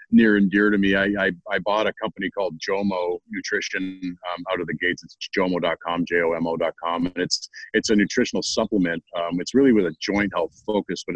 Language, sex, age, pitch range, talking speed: English, male, 40-59, 90-100 Hz, 200 wpm